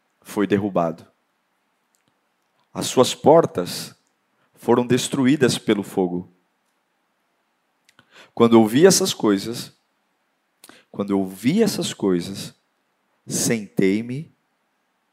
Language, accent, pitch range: Portuguese, Brazilian, 95-125 Hz